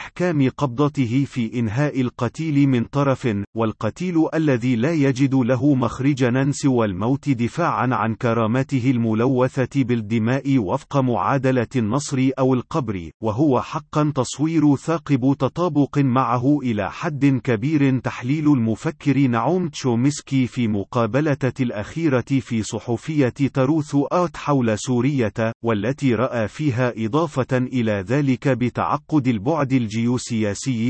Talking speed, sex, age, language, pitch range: 110 wpm, male, 40-59, Arabic, 120-140 Hz